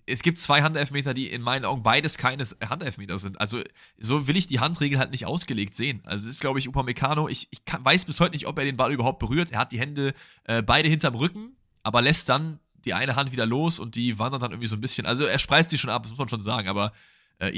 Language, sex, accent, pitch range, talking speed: German, male, German, 110-145 Hz, 265 wpm